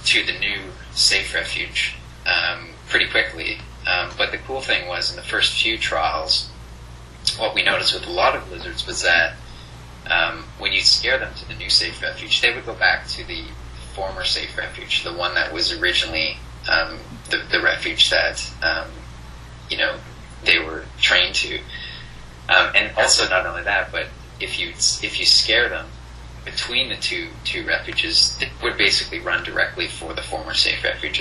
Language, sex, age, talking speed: English, male, 30-49, 175 wpm